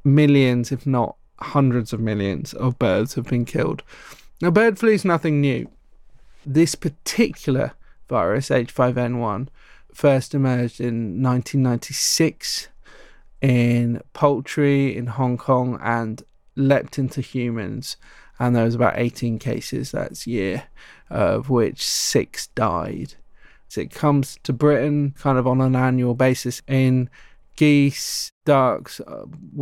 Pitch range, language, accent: 125-145 Hz, English, British